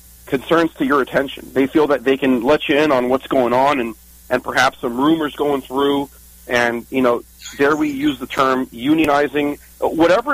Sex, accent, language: male, American, English